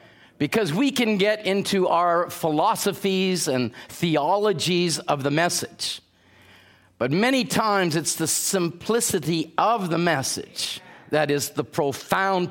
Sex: male